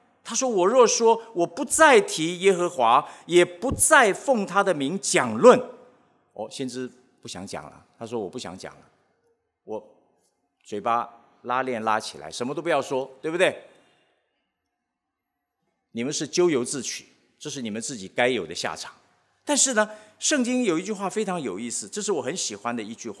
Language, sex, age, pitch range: English, male, 50-69, 165-250 Hz